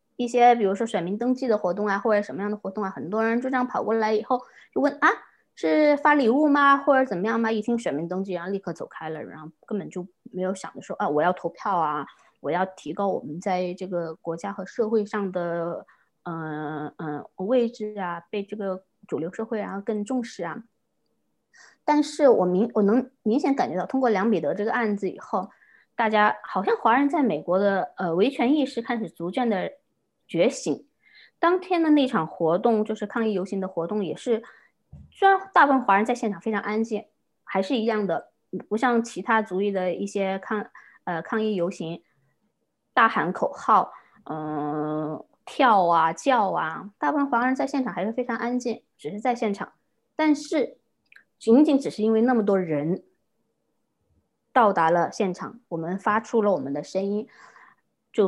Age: 20-39